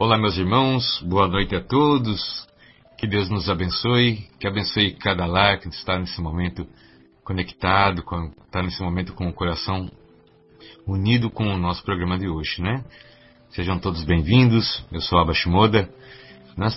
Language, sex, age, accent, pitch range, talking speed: Portuguese, male, 60-79, Brazilian, 90-115 Hz, 155 wpm